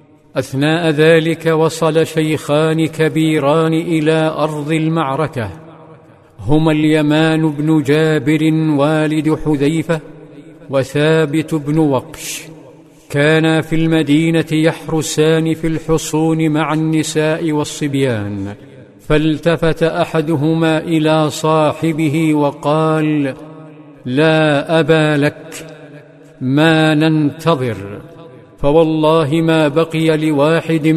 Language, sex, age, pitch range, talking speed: Arabic, male, 50-69, 150-160 Hz, 80 wpm